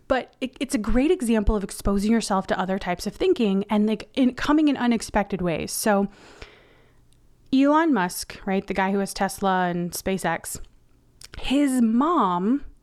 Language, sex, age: English, female, 30-49